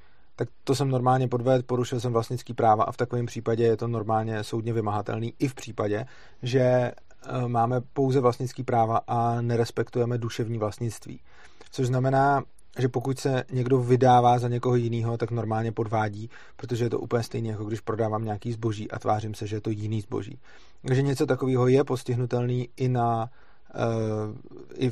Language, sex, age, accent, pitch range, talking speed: Czech, male, 30-49, native, 115-130 Hz, 160 wpm